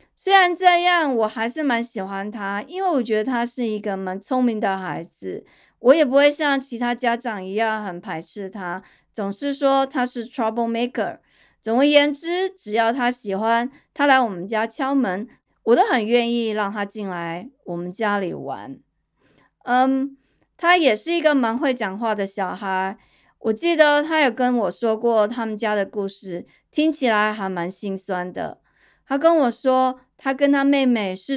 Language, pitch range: Chinese, 205-280 Hz